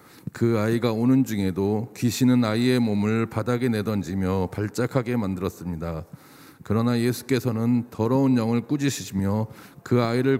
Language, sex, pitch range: Korean, male, 105-130 Hz